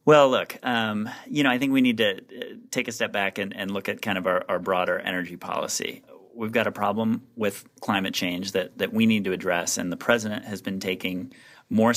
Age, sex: 30-49, male